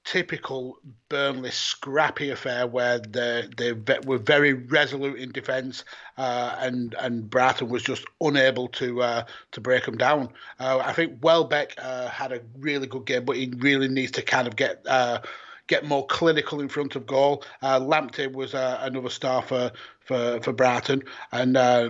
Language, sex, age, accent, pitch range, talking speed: English, male, 30-49, British, 120-140 Hz, 170 wpm